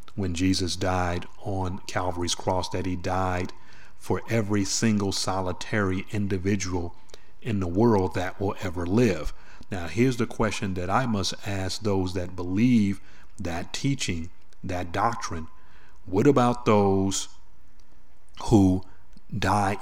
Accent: American